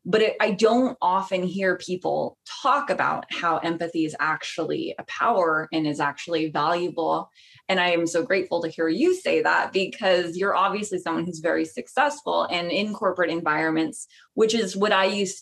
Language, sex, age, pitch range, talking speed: English, female, 20-39, 165-215 Hz, 170 wpm